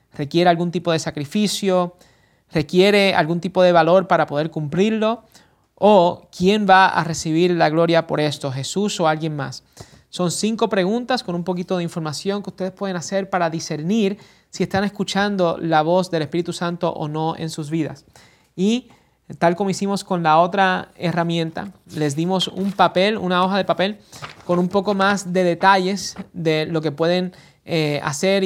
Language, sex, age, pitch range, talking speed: English, male, 30-49, 160-195 Hz, 170 wpm